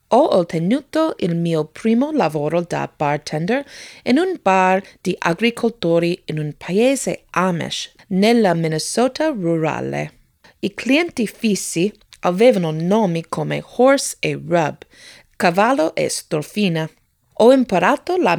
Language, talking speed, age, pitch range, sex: Italian, 115 wpm, 30-49, 165-250 Hz, female